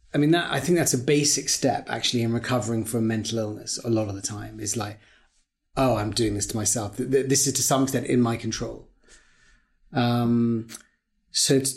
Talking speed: 195 wpm